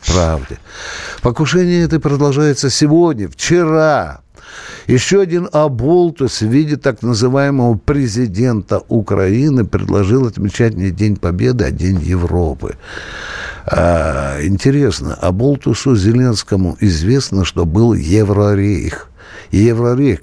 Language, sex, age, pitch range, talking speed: Russian, male, 60-79, 90-125 Hz, 95 wpm